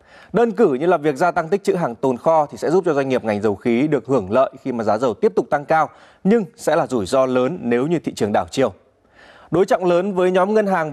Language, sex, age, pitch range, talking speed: Vietnamese, male, 20-39, 130-185 Hz, 280 wpm